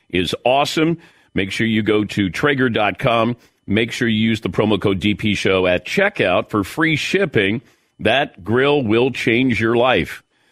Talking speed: 160 wpm